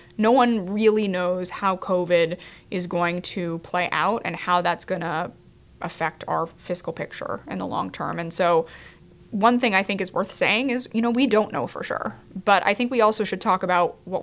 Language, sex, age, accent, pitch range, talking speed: English, female, 20-39, American, 180-220 Hz, 205 wpm